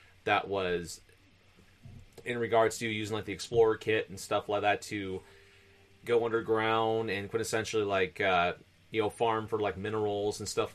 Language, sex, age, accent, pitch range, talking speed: English, male, 30-49, American, 95-115 Hz, 160 wpm